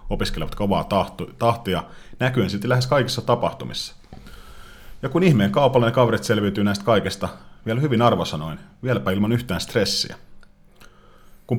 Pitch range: 95-120 Hz